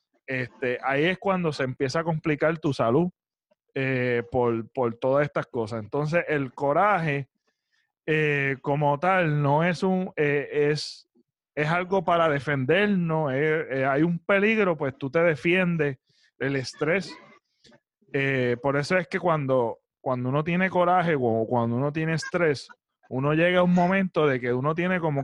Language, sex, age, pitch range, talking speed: Spanish, male, 30-49, 145-190 Hz, 160 wpm